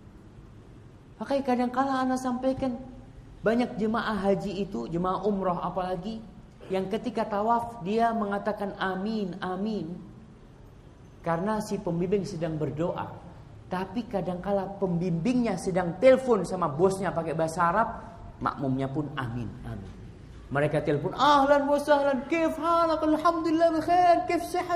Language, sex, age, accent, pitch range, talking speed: Indonesian, male, 40-59, native, 125-195 Hz, 110 wpm